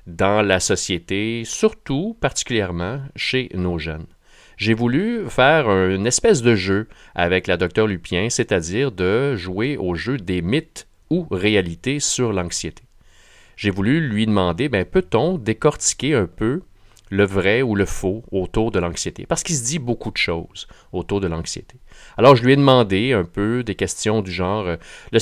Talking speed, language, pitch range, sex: 165 wpm, French, 85-115 Hz, male